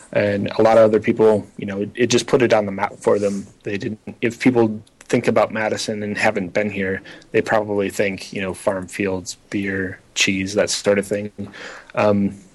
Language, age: English, 30-49